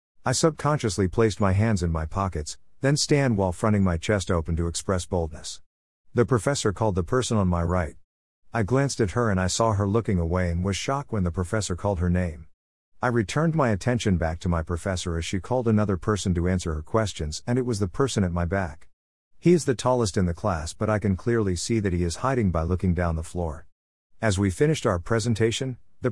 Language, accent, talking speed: English, American, 225 wpm